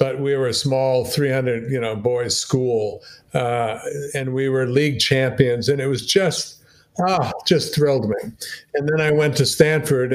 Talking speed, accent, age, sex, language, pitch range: 175 wpm, American, 50-69, male, English, 125-155 Hz